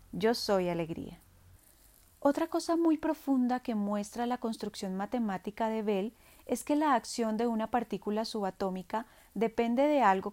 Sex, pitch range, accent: female, 200-250 Hz, Colombian